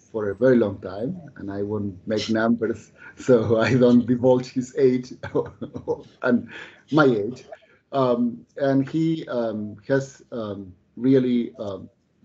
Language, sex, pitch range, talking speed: English, male, 105-125 Hz, 130 wpm